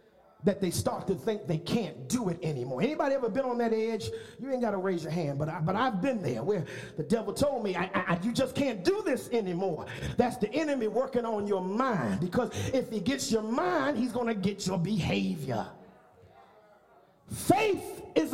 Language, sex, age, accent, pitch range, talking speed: English, male, 50-69, American, 205-290 Hz, 195 wpm